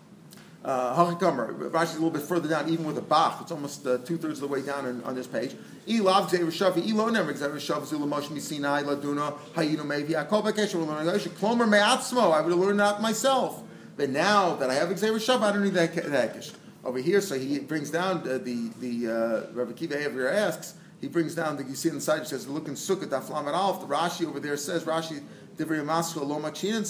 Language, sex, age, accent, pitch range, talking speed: English, male, 40-59, American, 150-190 Hz, 170 wpm